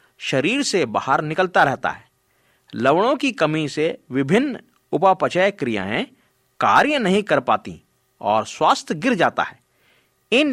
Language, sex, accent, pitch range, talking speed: Hindi, male, native, 130-220 Hz, 130 wpm